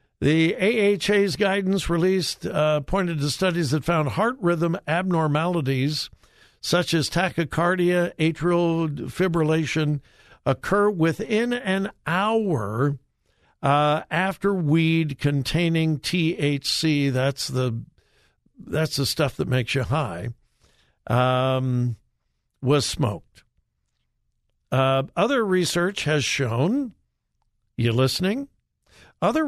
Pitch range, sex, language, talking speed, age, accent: 130-185 Hz, male, English, 90 wpm, 60-79, American